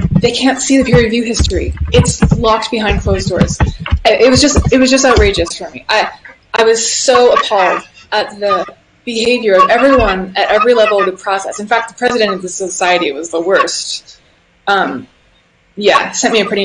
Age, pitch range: 20-39, 195-250 Hz